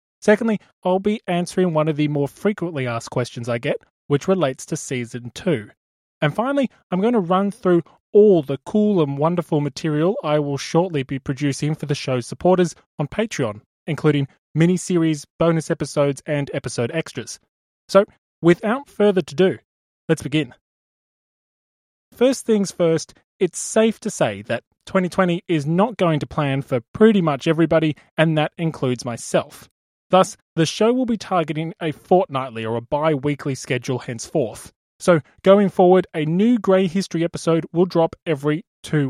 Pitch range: 140-185 Hz